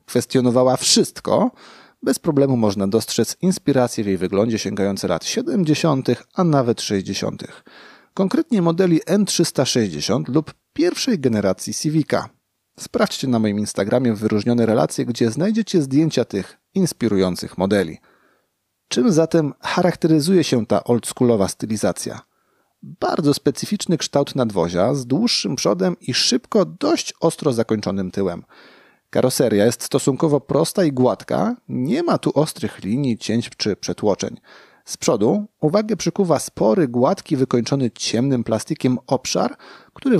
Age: 40-59